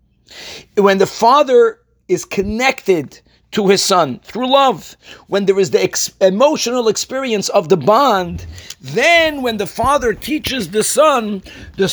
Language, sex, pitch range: English, male, 180-260 Hz